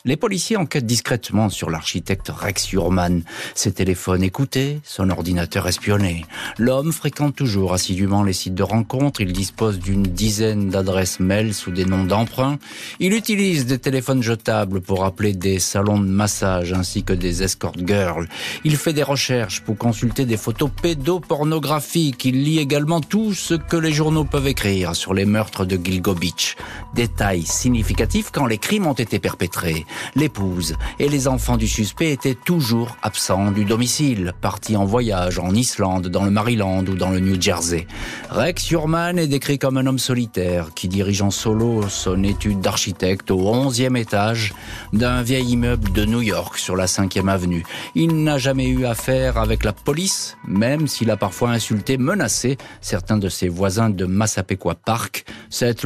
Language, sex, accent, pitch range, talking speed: French, male, French, 95-130 Hz, 170 wpm